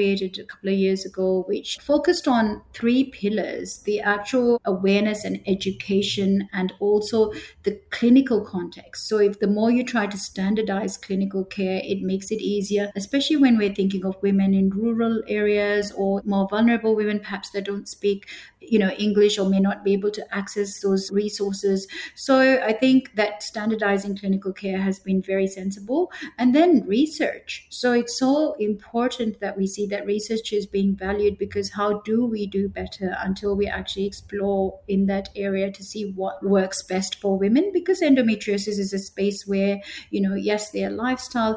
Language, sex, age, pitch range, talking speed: English, female, 50-69, 195-220 Hz, 175 wpm